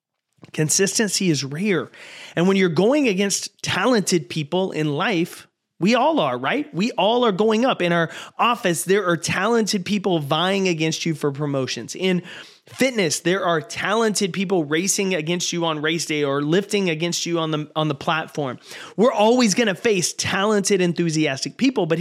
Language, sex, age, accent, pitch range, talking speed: English, male, 30-49, American, 160-205 Hz, 170 wpm